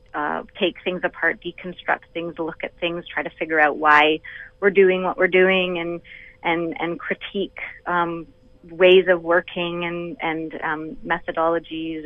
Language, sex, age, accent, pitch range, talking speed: English, female, 30-49, American, 165-190 Hz, 160 wpm